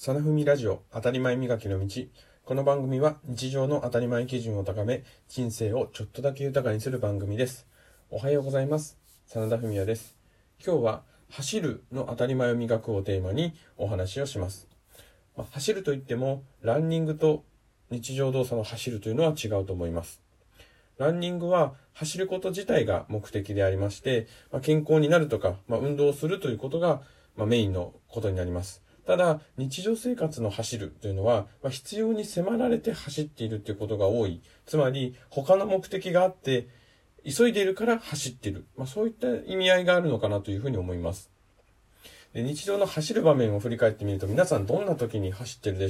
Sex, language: male, Japanese